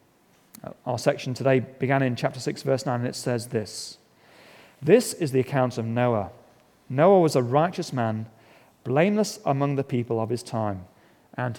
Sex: male